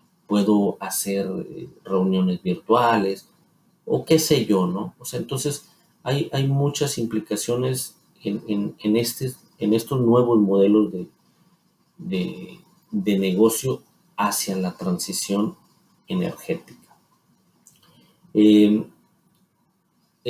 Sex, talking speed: male, 100 wpm